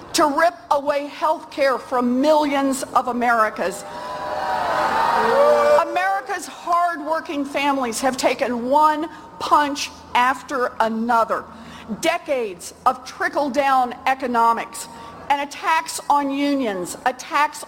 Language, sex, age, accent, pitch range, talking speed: English, female, 50-69, American, 255-320 Hz, 90 wpm